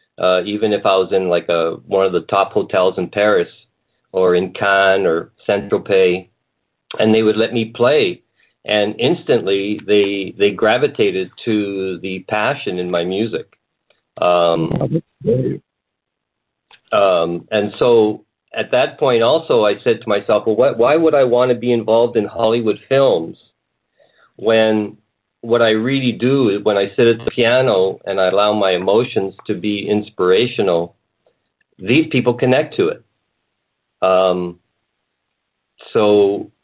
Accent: American